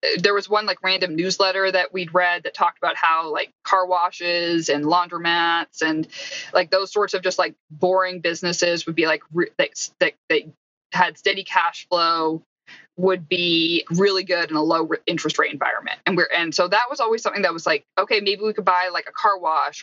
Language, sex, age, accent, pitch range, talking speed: English, female, 20-39, American, 165-215 Hz, 210 wpm